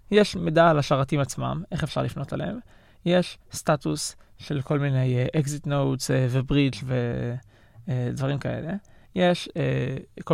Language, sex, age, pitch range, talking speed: Hebrew, male, 20-39, 130-180 Hz, 145 wpm